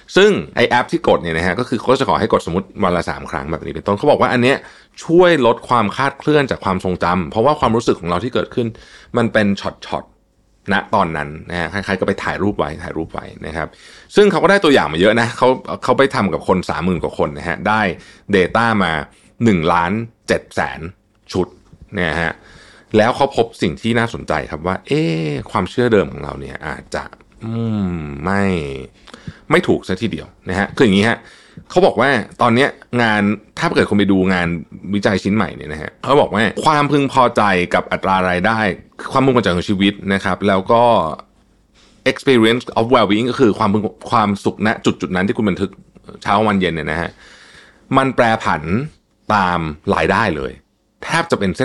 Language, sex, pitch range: Thai, male, 90-115 Hz